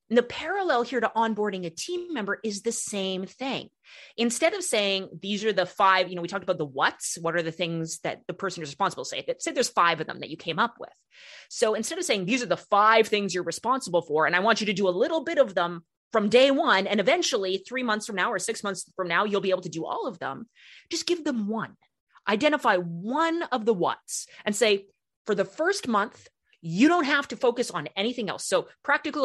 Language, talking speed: English, 240 wpm